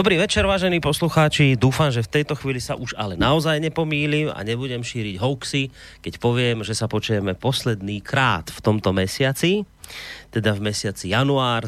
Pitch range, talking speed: 110-145 Hz, 165 wpm